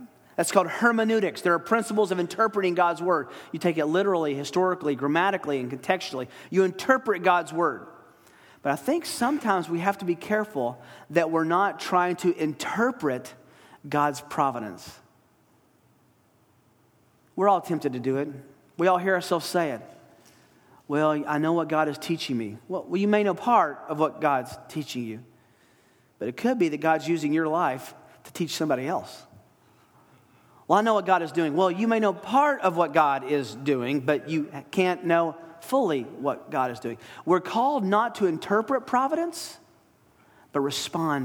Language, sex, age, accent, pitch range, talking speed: English, male, 40-59, American, 145-190 Hz, 170 wpm